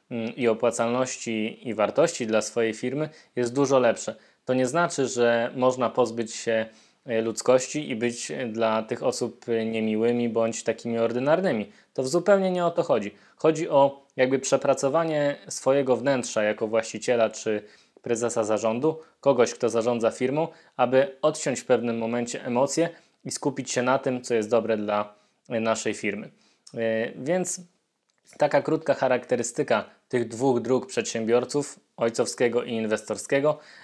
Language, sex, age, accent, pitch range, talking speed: Polish, male, 20-39, native, 115-140 Hz, 135 wpm